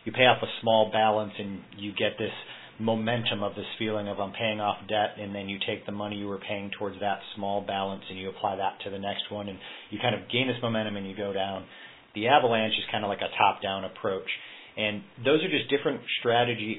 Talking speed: 235 wpm